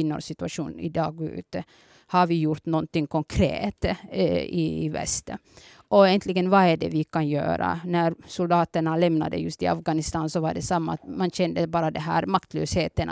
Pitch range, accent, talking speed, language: 160-180 Hz, Finnish, 175 wpm, Swedish